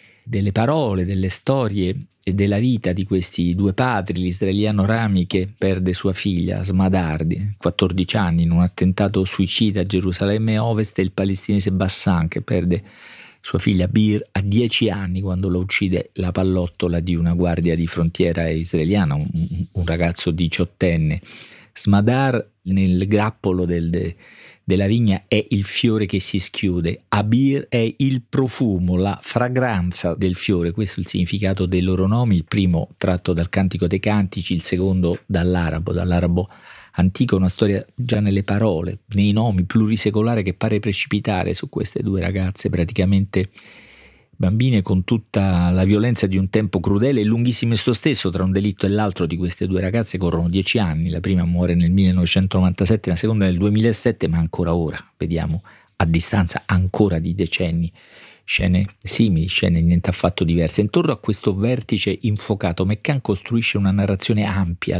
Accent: native